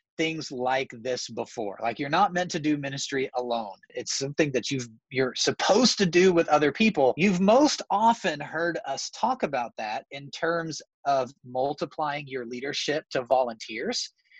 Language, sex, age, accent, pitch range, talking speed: English, male, 30-49, American, 130-170 Hz, 165 wpm